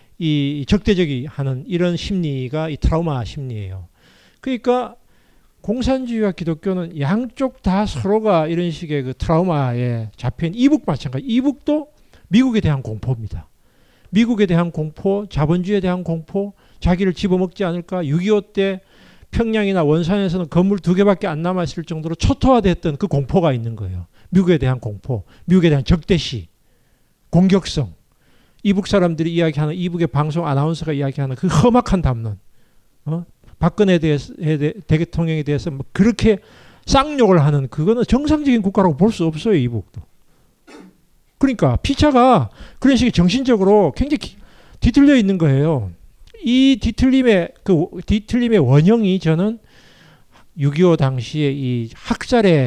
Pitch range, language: 145-205 Hz, Korean